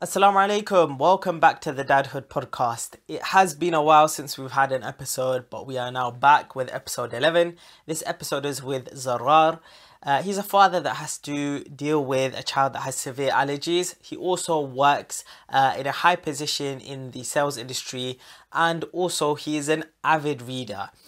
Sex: male